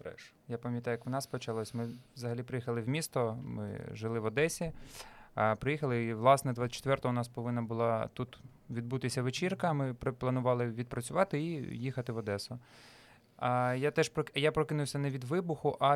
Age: 20-39